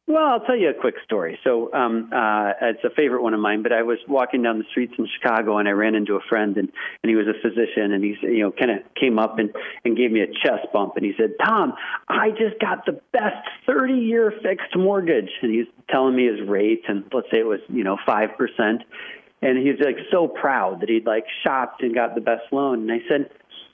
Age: 40-59